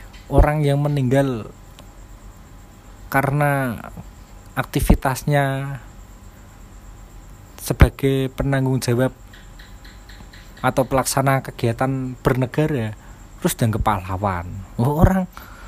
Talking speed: 65 wpm